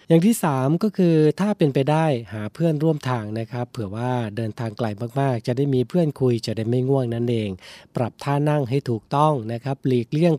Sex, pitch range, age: male, 120-150 Hz, 20-39